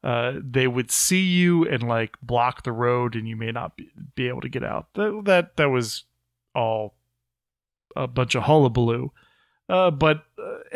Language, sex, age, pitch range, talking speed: English, male, 30-49, 120-155 Hz, 180 wpm